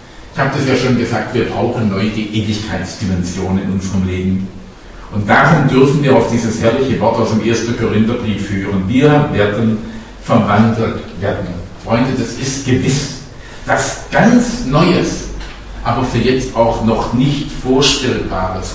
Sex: male